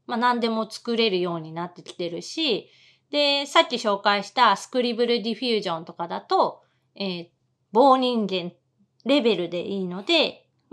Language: Japanese